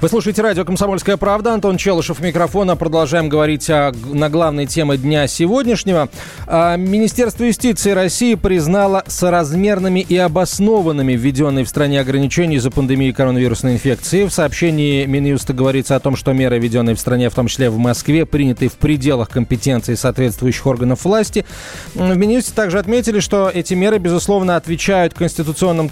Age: 20-39